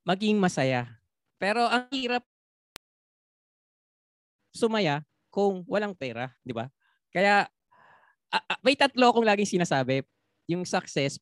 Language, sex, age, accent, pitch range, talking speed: Filipino, male, 20-39, native, 145-200 Hz, 110 wpm